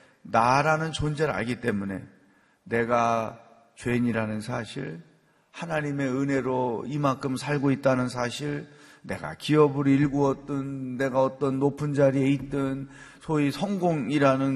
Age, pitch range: 40-59, 130-165 Hz